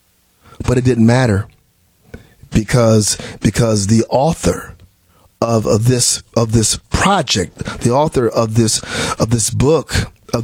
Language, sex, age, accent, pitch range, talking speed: English, male, 40-59, American, 110-180 Hz, 125 wpm